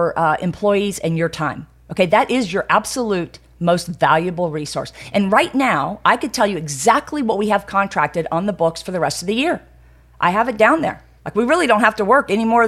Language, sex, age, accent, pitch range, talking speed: English, female, 40-59, American, 155-220 Hz, 225 wpm